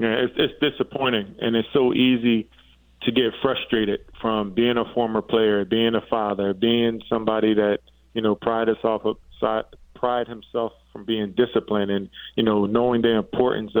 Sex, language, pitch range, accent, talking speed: male, English, 105-120 Hz, American, 150 wpm